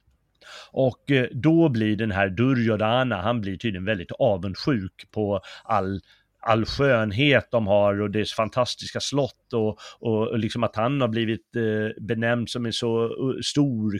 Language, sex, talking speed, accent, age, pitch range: Swedish, male, 145 wpm, native, 30-49, 105-130 Hz